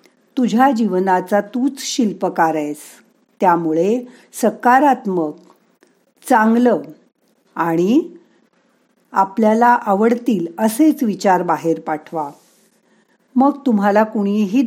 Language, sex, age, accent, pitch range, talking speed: Marathi, female, 50-69, native, 175-235 Hz, 75 wpm